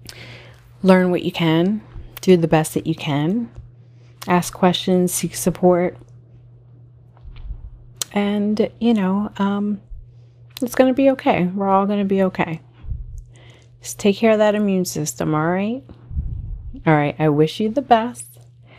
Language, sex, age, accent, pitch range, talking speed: English, female, 30-49, American, 140-195 Hz, 145 wpm